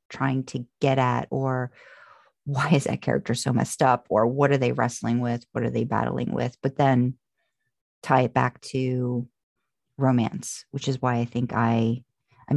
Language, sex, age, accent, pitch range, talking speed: English, female, 40-59, American, 125-155 Hz, 175 wpm